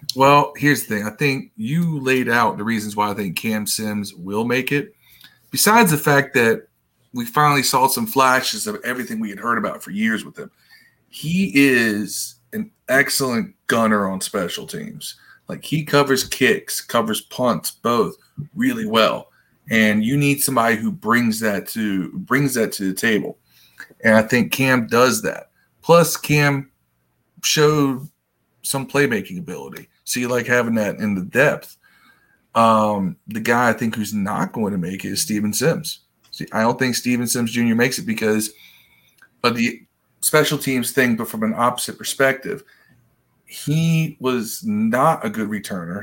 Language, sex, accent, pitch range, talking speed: English, male, American, 110-145 Hz, 165 wpm